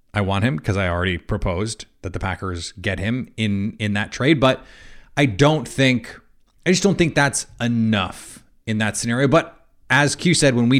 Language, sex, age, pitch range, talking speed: English, male, 30-49, 110-145 Hz, 195 wpm